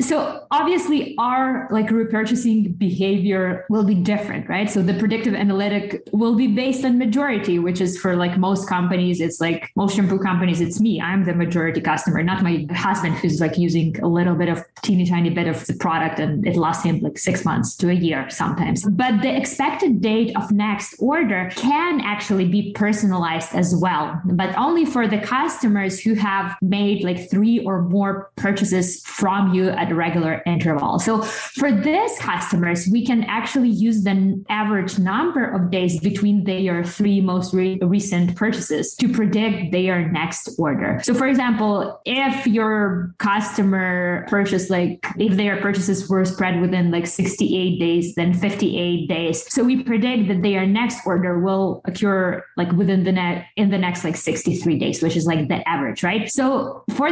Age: 20-39